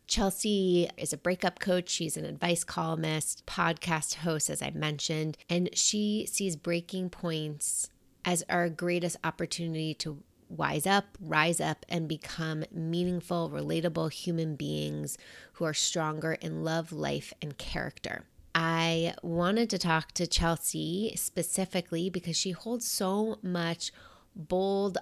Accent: American